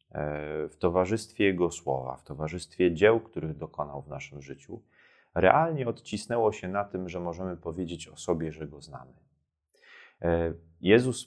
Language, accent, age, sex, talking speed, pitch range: Polish, native, 30-49, male, 140 wpm, 80-100 Hz